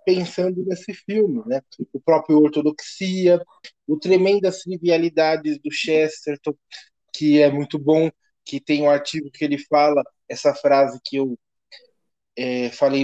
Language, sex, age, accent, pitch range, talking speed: Portuguese, male, 20-39, Brazilian, 140-180 Hz, 135 wpm